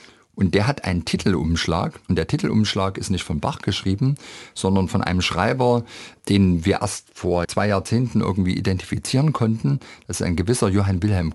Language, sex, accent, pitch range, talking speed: German, male, German, 95-115 Hz, 170 wpm